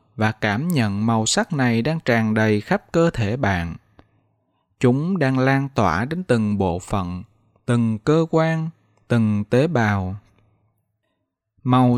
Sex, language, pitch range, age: male, Vietnamese, 105-140 Hz, 20-39